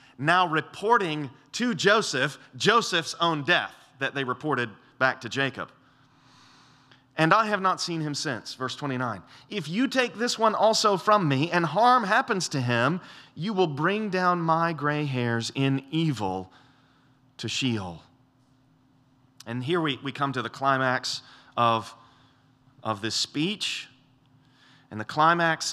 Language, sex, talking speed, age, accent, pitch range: English, male, 140 wpm, 30-49, American, 130-155 Hz